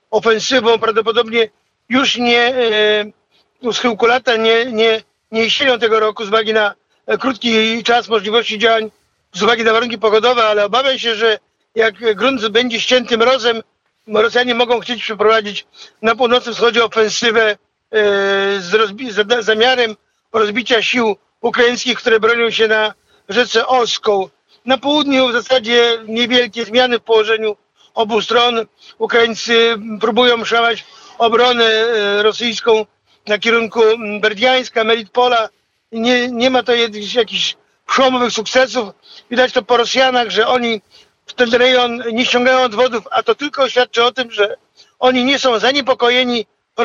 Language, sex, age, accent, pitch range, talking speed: Polish, male, 50-69, native, 220-245 Hz, 140 wpm